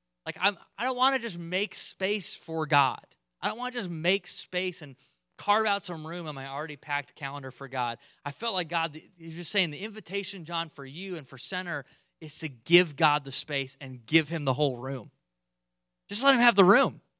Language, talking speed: English, 220 wpm